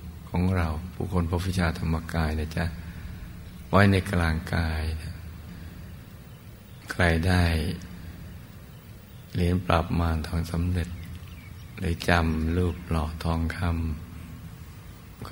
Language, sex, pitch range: Thai, male, 80-90 Hz